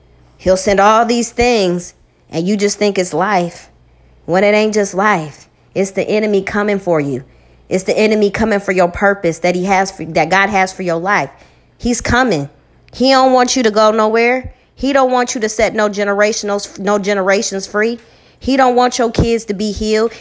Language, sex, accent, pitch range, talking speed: English, female, American, 185-230 Hz, 195 wpm